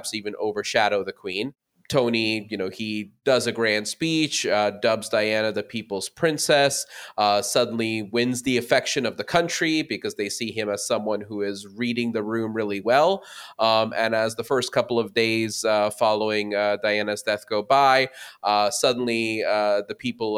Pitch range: 105-115 Hz